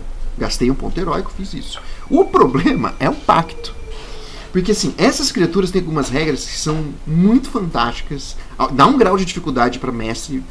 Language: Portuguese